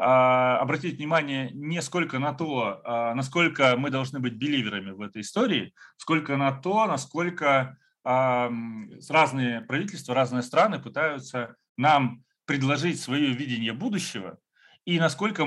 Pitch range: 120-150 Hz